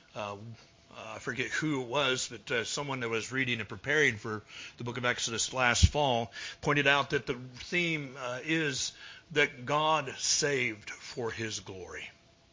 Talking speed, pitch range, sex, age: 165 wpm, 115-145 Hz, male, 60-79